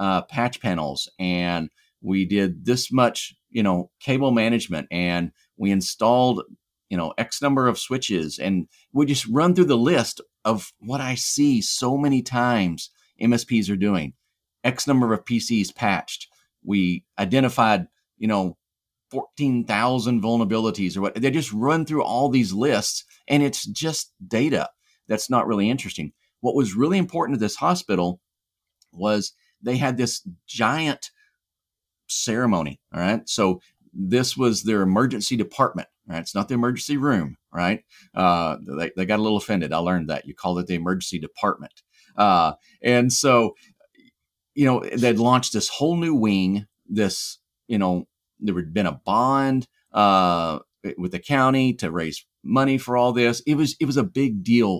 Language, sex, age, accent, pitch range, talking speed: English, male, 40-59, American, 95-135 Hz, 160 wpm